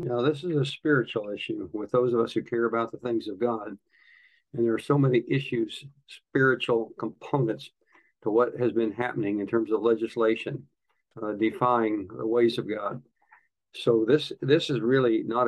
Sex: male